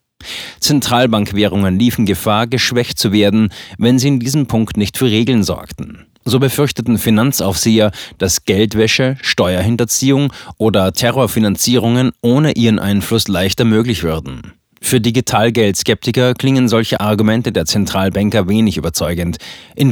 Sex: male